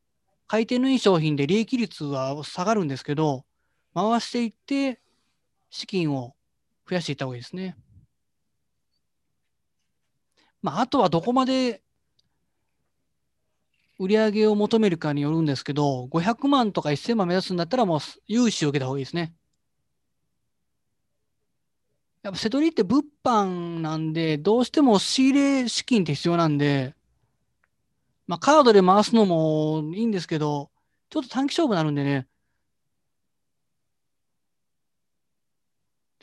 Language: Japanese